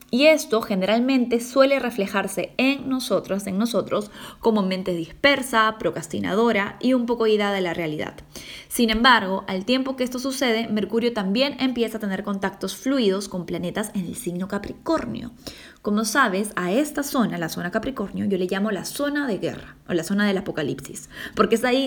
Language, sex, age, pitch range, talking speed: Spanish, female, 10-29, 185-245 Hz, 175 wpm